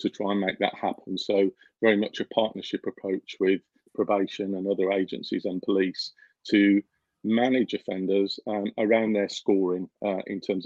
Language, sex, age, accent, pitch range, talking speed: English, male, 40-59, British, 95-110 Hz, 165 wpm